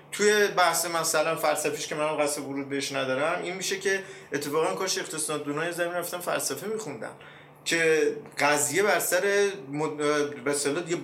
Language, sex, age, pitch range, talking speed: Persian, male, 30-49, 135-160 Hz, 140 wpm